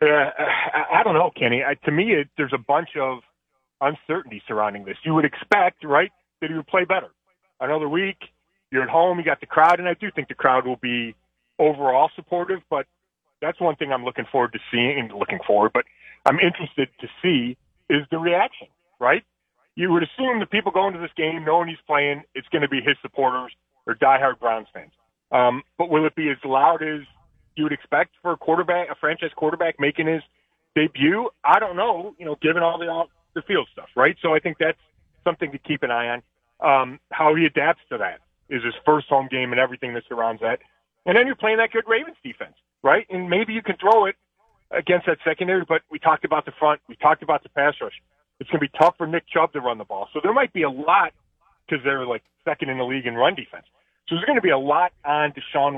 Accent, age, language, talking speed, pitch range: American, 30-49, English, 230 wpm, 135-175 Hz